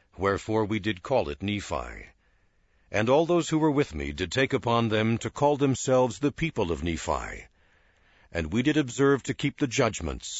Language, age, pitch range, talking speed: English, 60-79, 90-130 Hz, 185 wpm